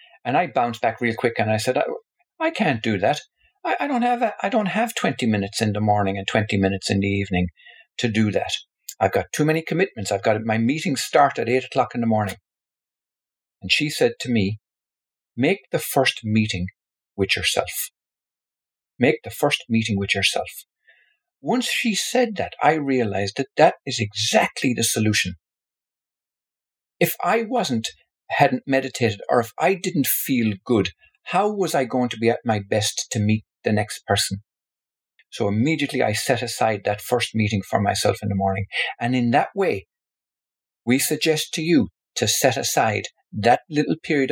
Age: 50-69